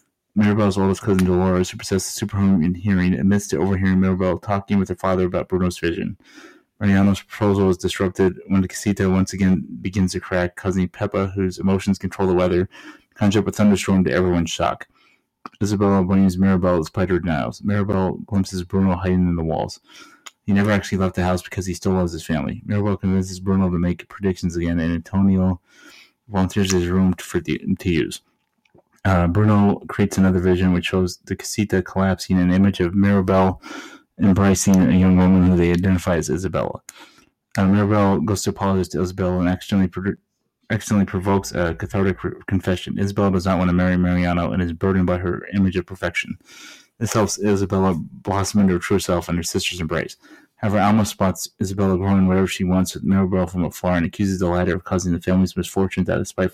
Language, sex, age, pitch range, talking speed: English, male, 30-49, 90-100 Hz, 185 wpm